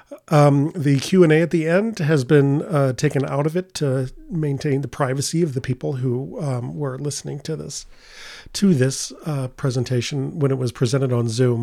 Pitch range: 130-160 Hz